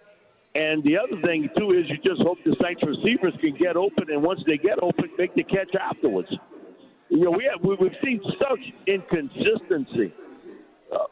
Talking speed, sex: 180 wpm, male